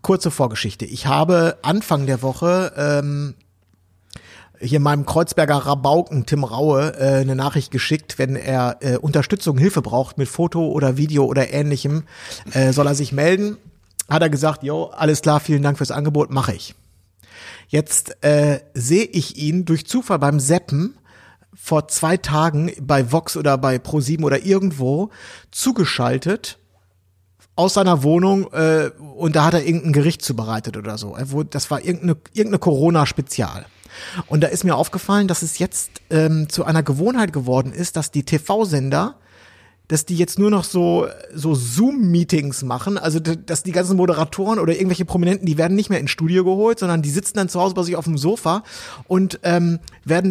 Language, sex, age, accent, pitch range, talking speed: German, male, 50-69, German, 140-180 Hz, 170 wpm